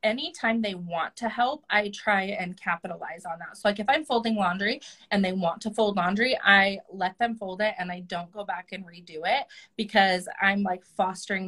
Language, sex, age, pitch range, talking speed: English, female, 20-39, 175-215 Hz, 210 wpm